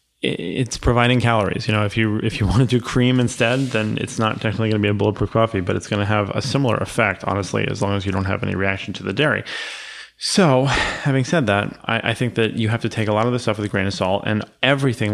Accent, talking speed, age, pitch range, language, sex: American, 270 wpm, 20-39, 100-115 Hz, English, male